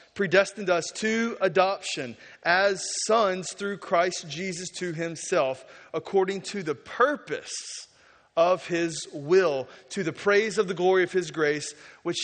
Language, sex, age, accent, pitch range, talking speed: English, male, 30-49, American, 135-195 Hz, 135 wpm